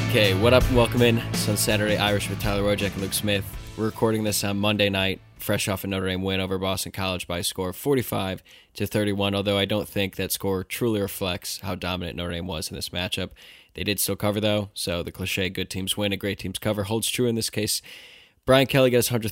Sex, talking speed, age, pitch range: male, 245 wpm, 10-29, 95-110 Hz